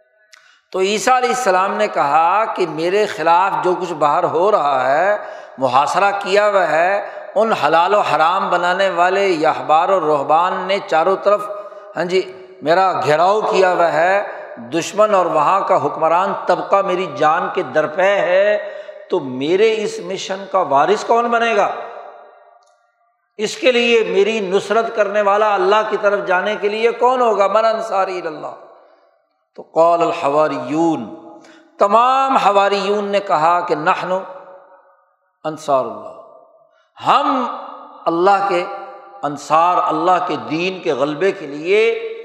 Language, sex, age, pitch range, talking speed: Urdu, male, 60-79, 185-230 Hz, 135 wpm